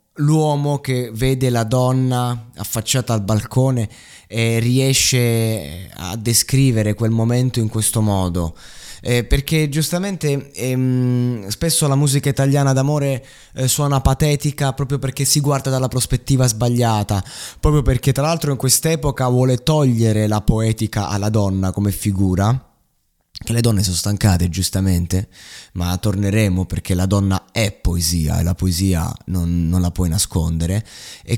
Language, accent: Italian, native